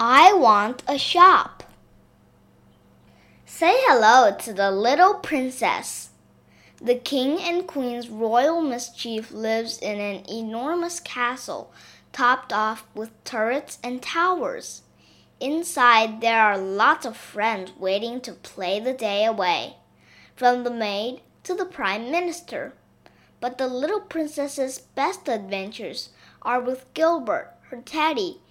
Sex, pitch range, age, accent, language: female, 225-300 Hz, 10-29, American, Chinese